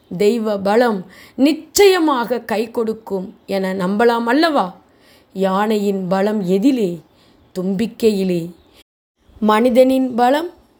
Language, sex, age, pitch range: Tamil, female, 20-39, 190-245 Hz